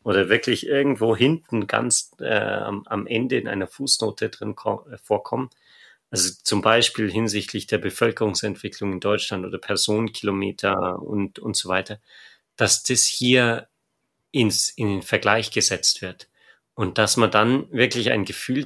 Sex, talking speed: male, 145 wpm